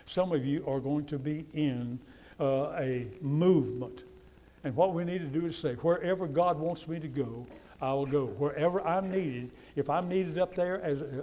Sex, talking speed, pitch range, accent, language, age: male, 190 wpm, 145-185 Hz, American, English, 60-79